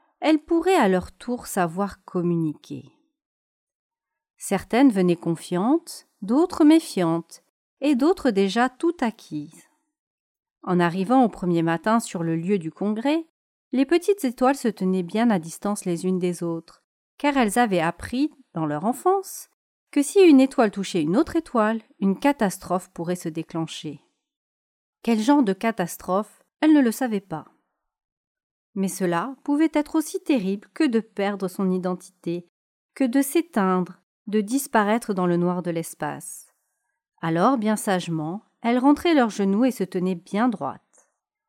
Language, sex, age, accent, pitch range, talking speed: French, female, 40-59, French, 185-290 Hz, 145 wpm